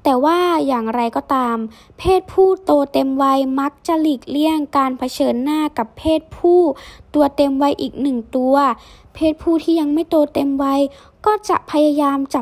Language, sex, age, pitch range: Thai, female, 10-29, 255-315 Hz